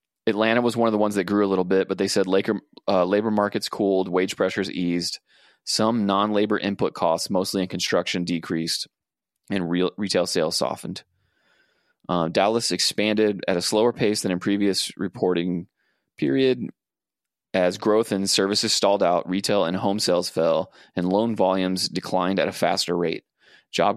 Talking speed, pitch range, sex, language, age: 160 wpm, 90-105 Hz, male, English, 20-39